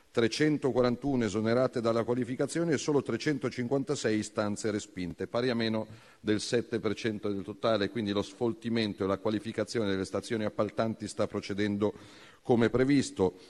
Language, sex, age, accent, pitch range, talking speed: Italian, male, 40-59, native, 105-135 Hz, 130 wpm